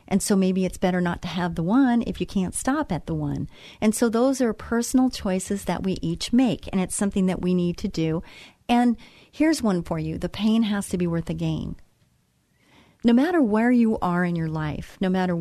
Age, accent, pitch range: 40-59, American, 170-220 Hz